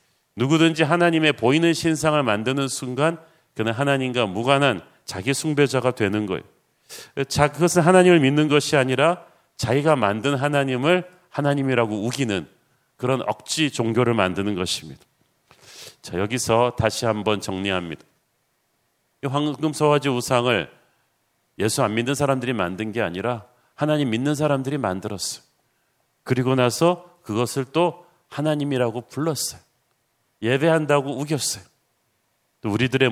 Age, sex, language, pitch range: 40-59, male, Korean, 115-145 Hz